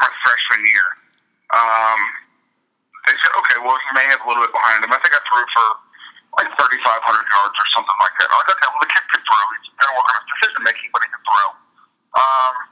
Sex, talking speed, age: male, 235 wpm, 40-59